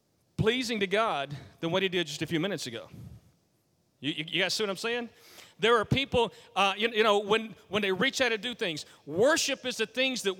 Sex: male